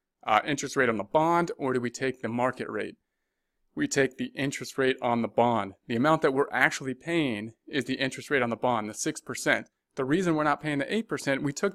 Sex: male